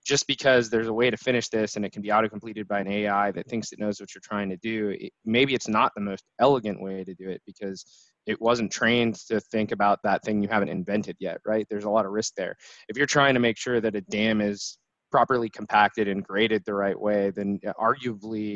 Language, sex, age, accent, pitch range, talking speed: English, male, 20-39, American, 105-125 Hz, 245 wpm